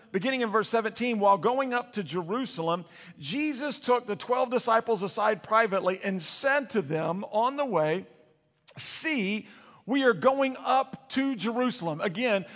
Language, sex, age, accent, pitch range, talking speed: English, male, 50-69, American, 195-260 Hz, 150 wpm